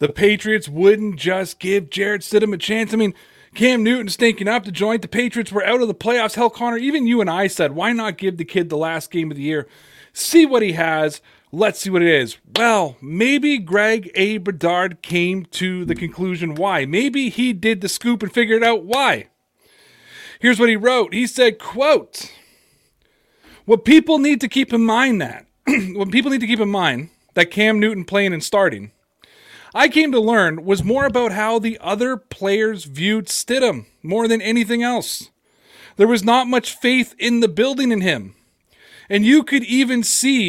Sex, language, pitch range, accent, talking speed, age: male, English, 180-235 Hz, American, 195 wpm, 30-49